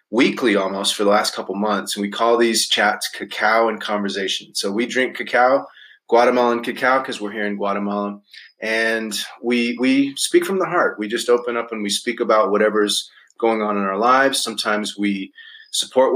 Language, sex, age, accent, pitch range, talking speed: English, male, 30-49, American, 105-130 Hz, 185 wpm